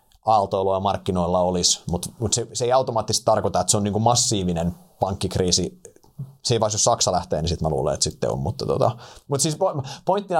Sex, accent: male, native